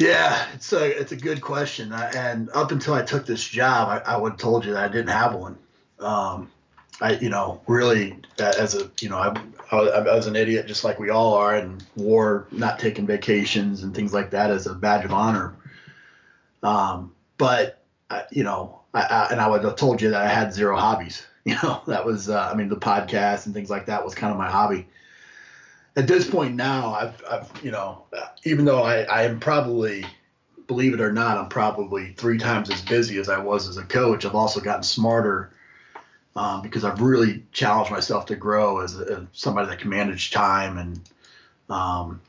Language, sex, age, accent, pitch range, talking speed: English, male, 30-49, American, 100-120 Hz, 205 wpm